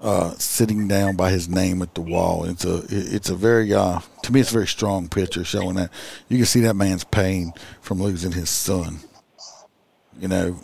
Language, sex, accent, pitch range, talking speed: English, male, American, 90-110 Hz, 210 wpm